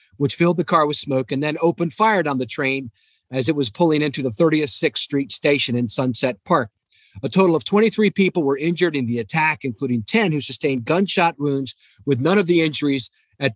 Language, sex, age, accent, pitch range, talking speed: English, male, 40-59, American, 130-170 Hz, 210 wpm